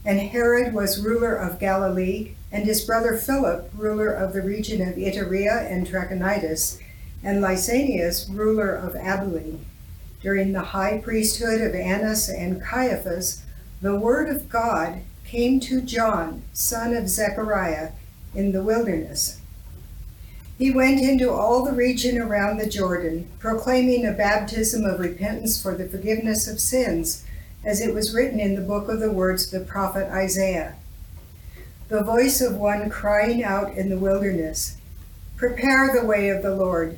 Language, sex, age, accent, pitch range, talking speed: English, female, 60-79, American, 185-225 Hz, 150 wpm